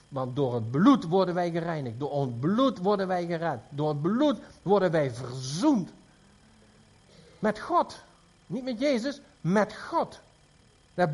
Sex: male